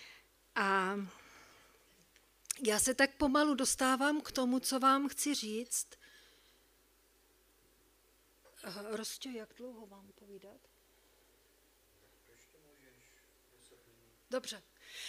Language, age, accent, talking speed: Czech, 50-69, native, 70 wpm